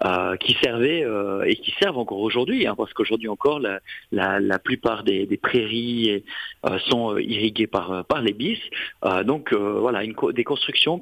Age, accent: 40-59, French